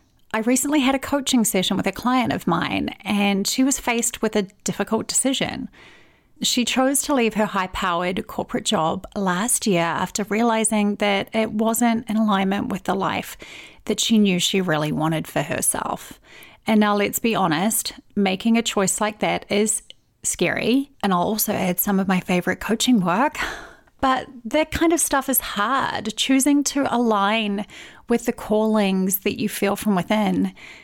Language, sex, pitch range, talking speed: English, female, 195-240 Hz, 170 wpm